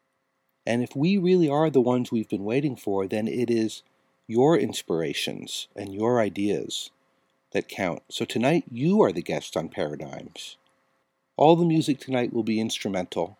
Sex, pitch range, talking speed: male, 105-135 Hz, 160 wpm